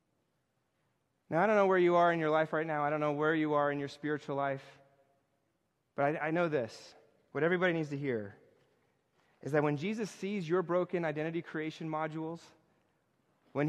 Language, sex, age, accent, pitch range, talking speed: English, male, 30-49, American, 130-175 Hz, 190 wpm